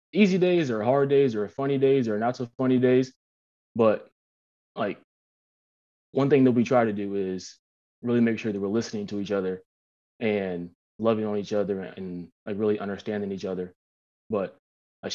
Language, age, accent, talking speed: English, 20-39, American, 180 wpm